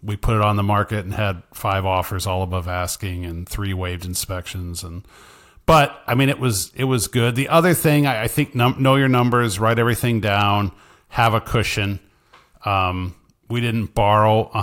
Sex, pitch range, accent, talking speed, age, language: male, 95-115 Hz, American, 190 wpm, 40-59, English